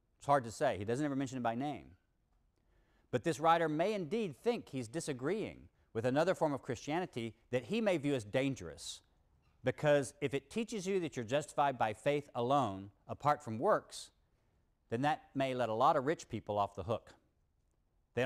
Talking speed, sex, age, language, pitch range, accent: 185 wpm, male, 50-69, English, 110-145 Hz, American